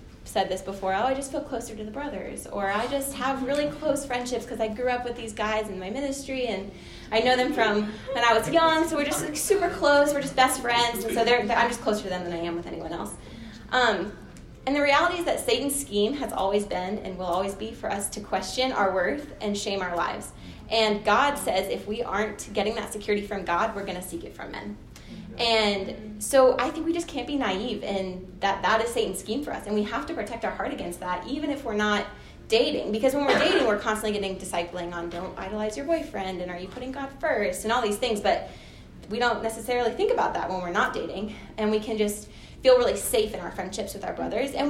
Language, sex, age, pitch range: English, female, 20-39, 195-260 Hz